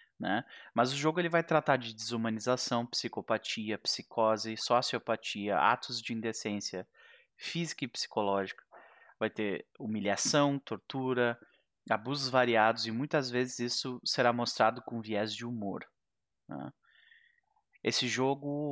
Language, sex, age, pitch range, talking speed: Portuguese, male, 20-39, 110-140 Hz, 120 wpm